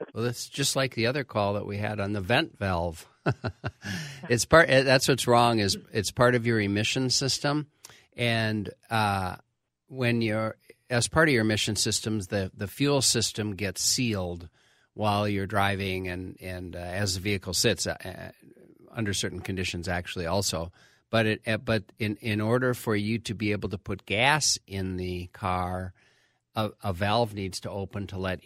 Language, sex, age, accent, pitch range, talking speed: English, male, 50-69, American, 90-110 Hz, 175 wpm